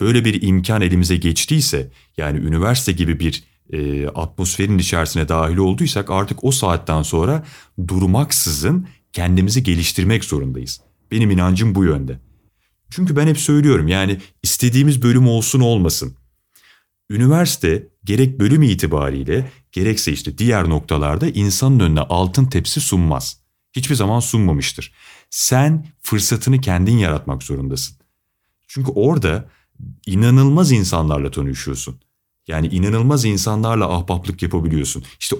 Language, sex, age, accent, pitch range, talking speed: Turkish, male, 30-49, native, 80-125 Hz, 115 wpm